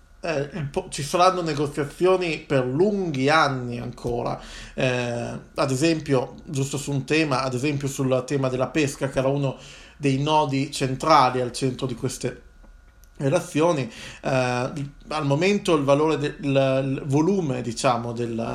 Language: Italian